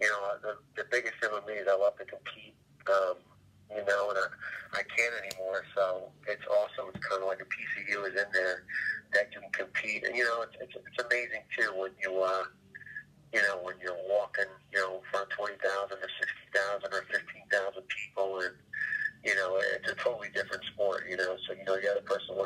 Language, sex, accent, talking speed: English, male, American, 215 wpm